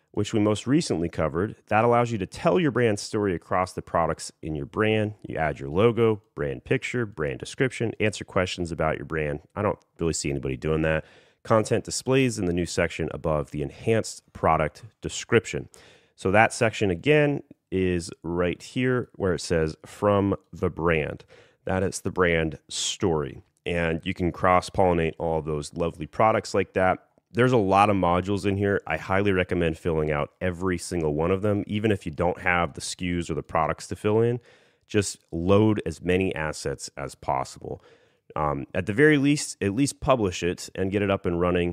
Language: English